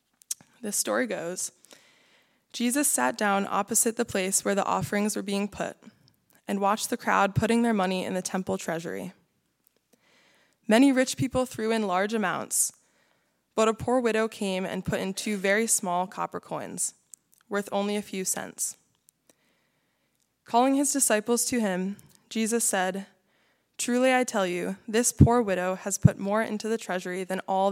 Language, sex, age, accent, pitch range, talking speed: English, female, 20-39, American, 190-230 Hz, 160 wpm